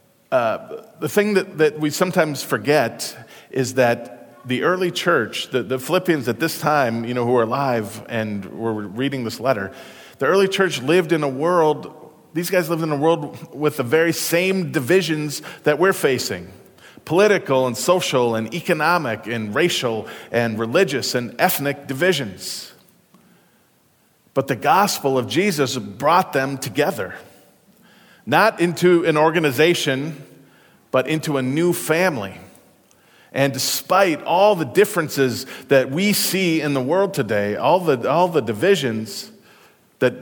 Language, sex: English, male